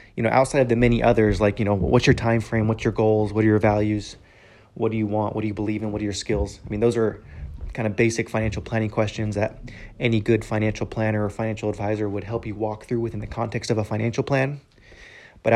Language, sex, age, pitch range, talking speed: English, male, 20-39, 105-115 Hz, 250 wpm